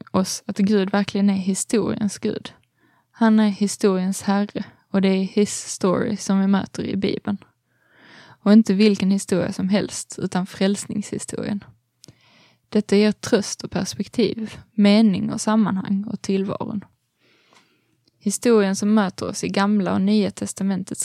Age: 20-39